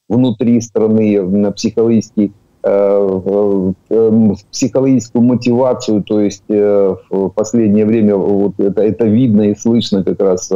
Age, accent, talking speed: 50-69, native, 115 wpm